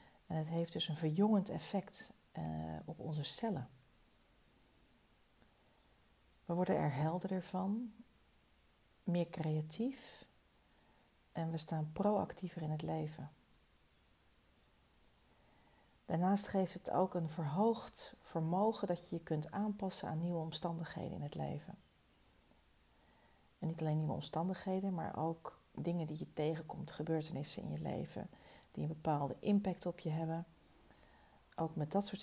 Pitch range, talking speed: 140-175 Hz, 130 wpm